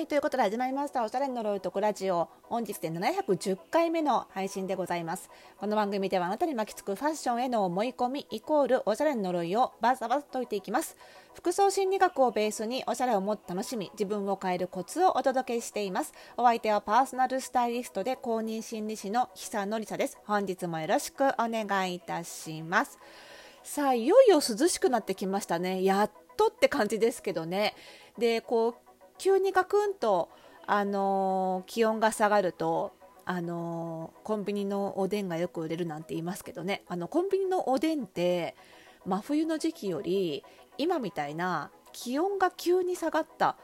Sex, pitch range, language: female, 185-260 Hz, Japanese